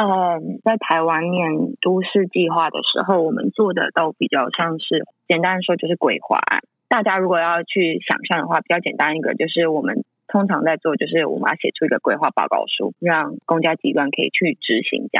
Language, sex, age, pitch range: Chinese, female, 20-39, 160-195 Hz